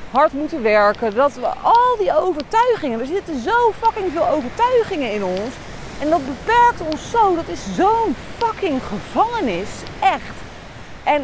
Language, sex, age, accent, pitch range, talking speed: Dutch, female, 30-49, Dutch, 230-380 Hz, 150 wpm